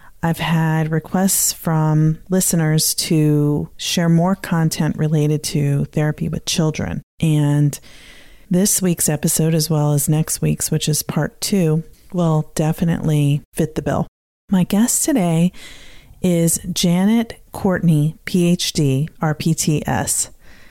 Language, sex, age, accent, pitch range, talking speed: English, female, 40-59, American, 155-180 Hz, 115 wpm